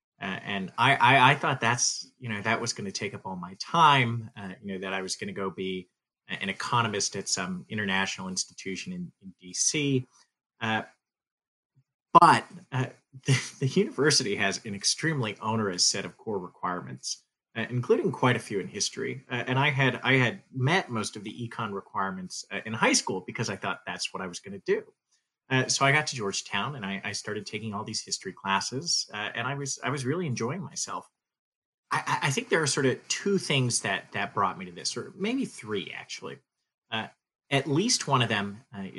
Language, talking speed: English, 205 wpm